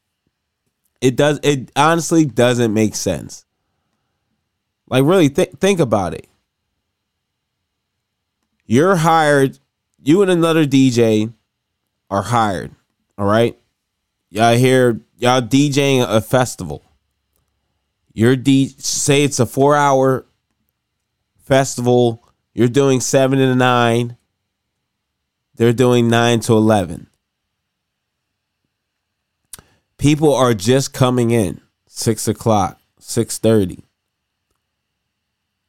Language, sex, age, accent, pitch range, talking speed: English, male, 20-39, American, 105-130 Hz, 90 wpm